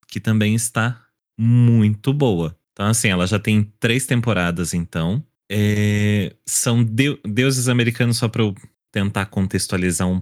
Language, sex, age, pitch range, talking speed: Portuguese, male, 20-39, 100-125 Hz, 140 wpm